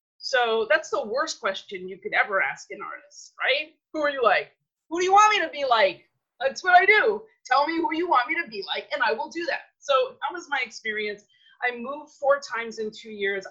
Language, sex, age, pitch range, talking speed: English, female, 30-49, 200-280 Hz, 240 wpm